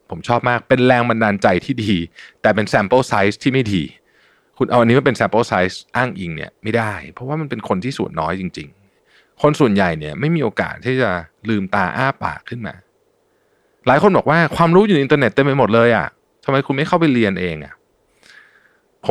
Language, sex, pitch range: Thai, male, 95-145 Hz